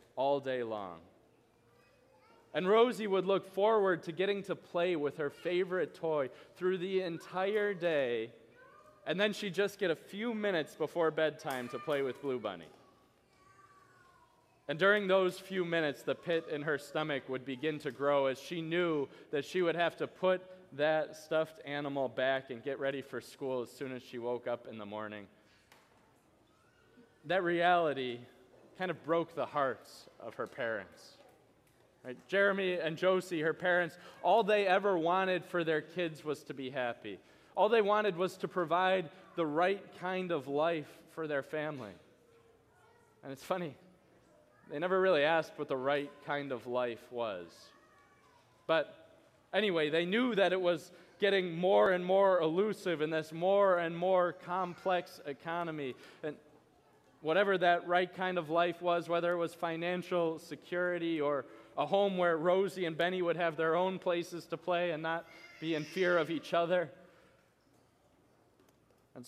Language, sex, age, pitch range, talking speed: English, male, 20-39, 145-185 Hz, 160 wpm